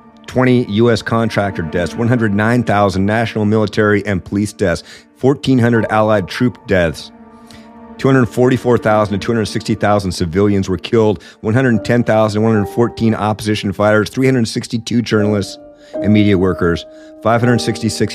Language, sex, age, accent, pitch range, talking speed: English, male, 50-69, American, 95-120 Hz, 105 wpm